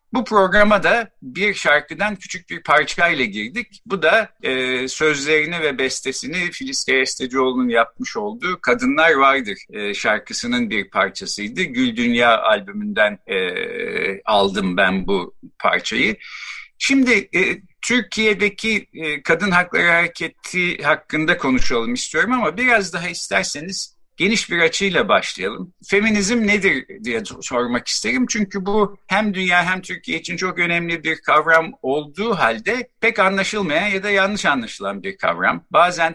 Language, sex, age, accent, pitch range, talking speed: Turkish, male, 50-69, native, 150-215 Hz, 130 wpm